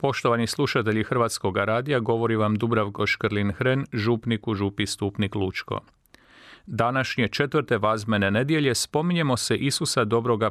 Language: Croatian